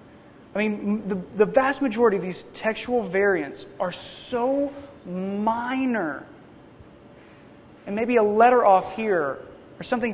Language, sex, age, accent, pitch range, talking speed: English, male, 30-49, American, 205-255 Hz, 125 wpm